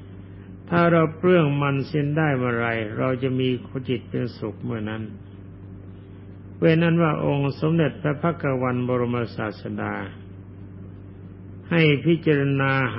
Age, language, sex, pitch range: 60-79, Thai, male, 95-140 Hz